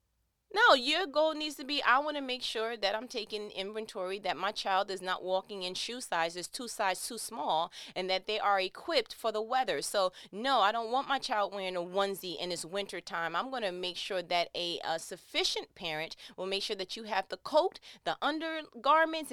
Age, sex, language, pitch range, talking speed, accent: 30-49, female, English, 185-285 Hz, 215 wpm, American